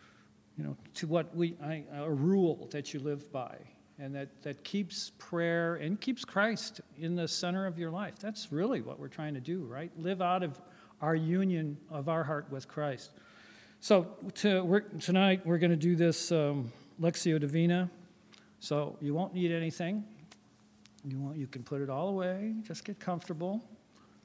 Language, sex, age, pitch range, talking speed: English, male, 50-69, 145-185 Hz, 180 wpm